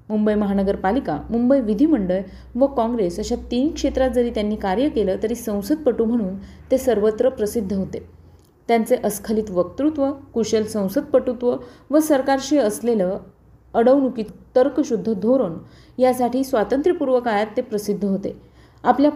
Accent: native